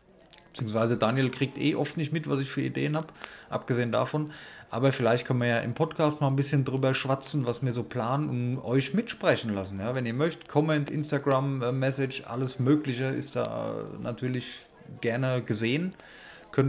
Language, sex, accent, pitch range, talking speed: German, male, German, 115-135 Hz, 170 wpm